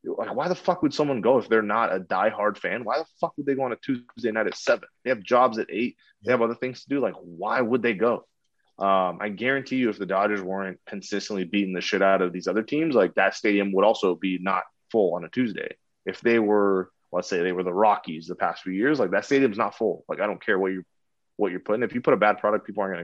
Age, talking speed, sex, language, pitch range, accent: 20-39, 270 wpm, male, English, 95-115 Hz, American